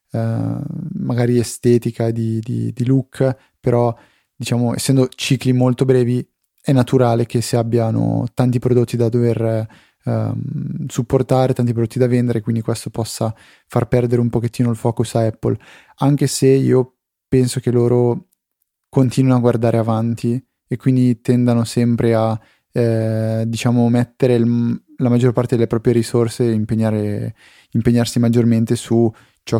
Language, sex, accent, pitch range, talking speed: Italian, male, native, 115-125 Hz, 140 wpm